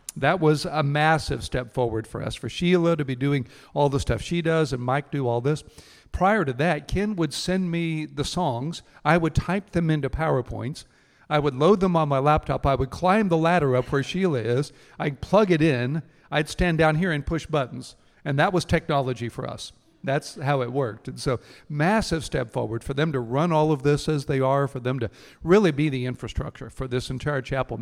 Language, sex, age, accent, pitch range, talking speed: English, male, 50-69, American, 130-160 Hz, 220 wpm